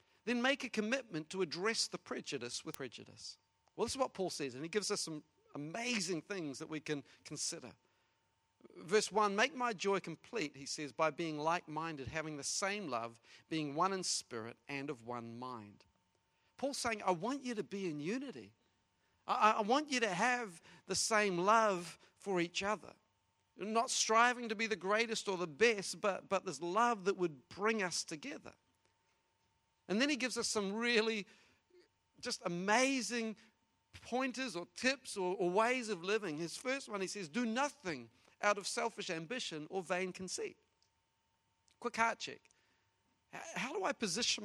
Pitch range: 155-225 Hz